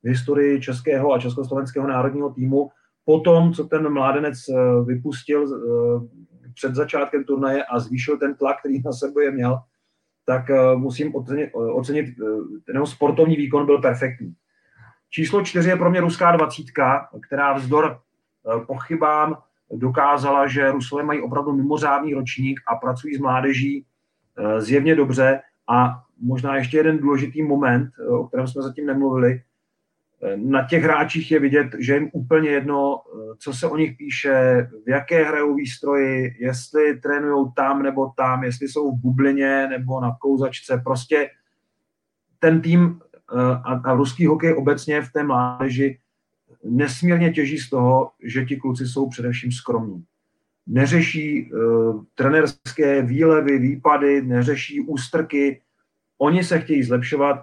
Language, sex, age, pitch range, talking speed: Czech, male, 30-49, 130-145 Hz, 135 wpm